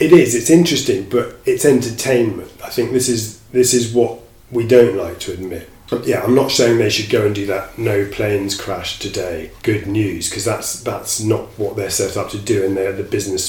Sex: male